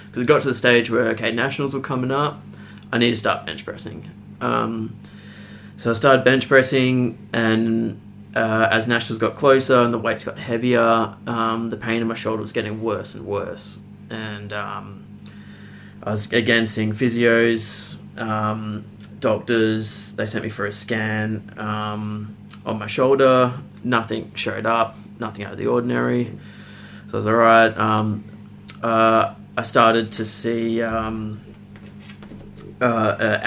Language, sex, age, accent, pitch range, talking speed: English, male, 20-39, Australian, 105-120 Hz, 150 wpm